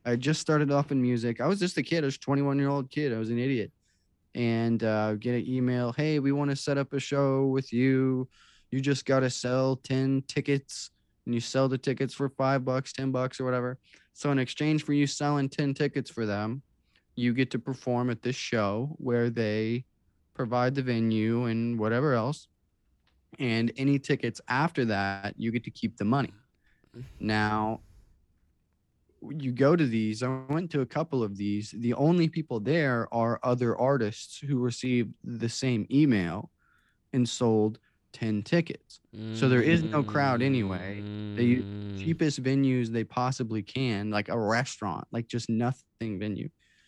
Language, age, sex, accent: English, 20-39, male, American